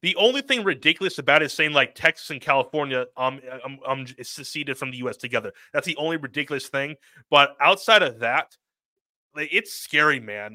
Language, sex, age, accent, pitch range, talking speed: English, male, 30-49, American, 130-165 Hz, 175 wpm